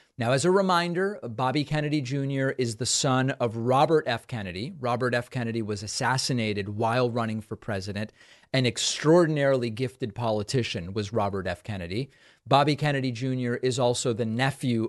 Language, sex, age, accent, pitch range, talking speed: English, male, 30-49, American, 115-140 Hz, 155 wpm